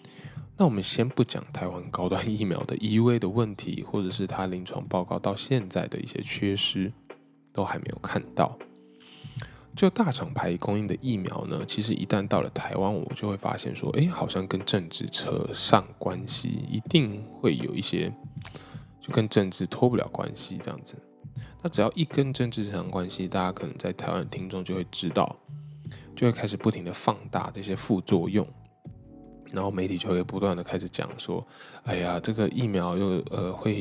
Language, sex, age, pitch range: Chinese, male, 10-29, 90-125 Hz